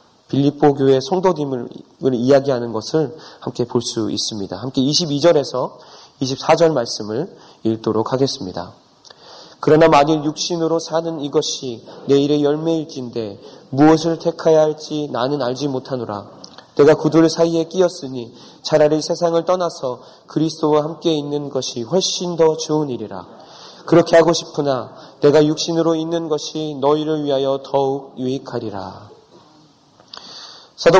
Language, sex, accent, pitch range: Korean, male, native, 135-170 Hz